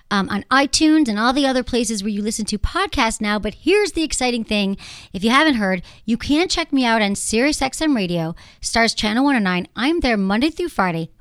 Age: 40-59